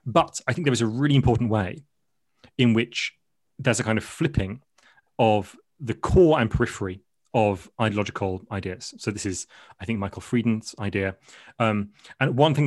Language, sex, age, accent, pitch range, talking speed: English, male, 30-49, British, 110-140 Hz, 170 wpm